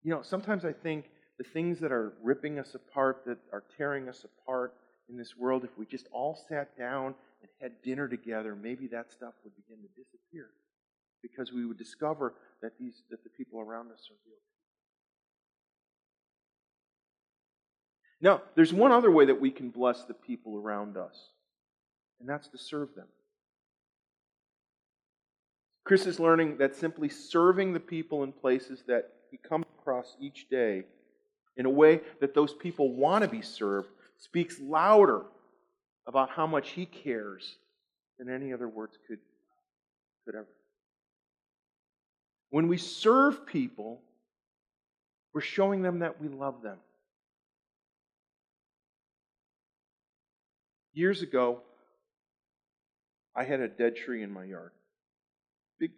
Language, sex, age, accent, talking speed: English, male, 40-59, American, 140 wpm